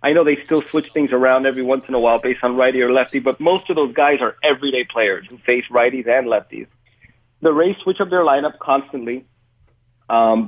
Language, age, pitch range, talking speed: English, 30-49, 125-160 Hz, 220 wpm